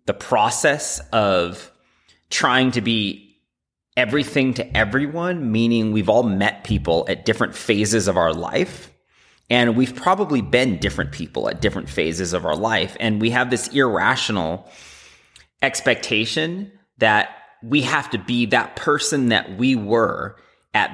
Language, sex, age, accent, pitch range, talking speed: English, male, 30-49, American, 95-120 Hz, 140 wpm